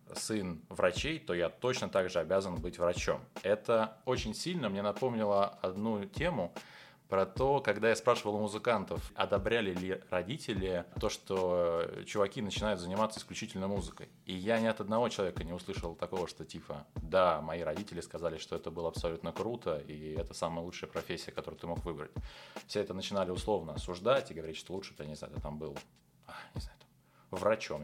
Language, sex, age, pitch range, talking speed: Russian, male, 20-39, 85-110 Hz, 170 wpm